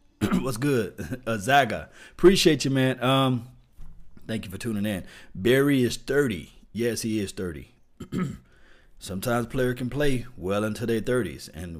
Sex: male